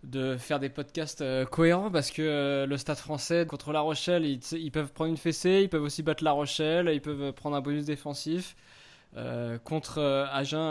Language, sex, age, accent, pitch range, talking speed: French, male, 20-39, French, 135-160 Hz, 185 wpm